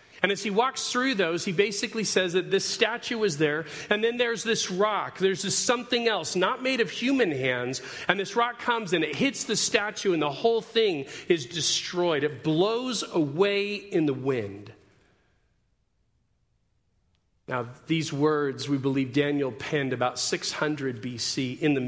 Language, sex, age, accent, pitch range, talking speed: English, male, 40-59, American, 130-185 Hz, 165 wpm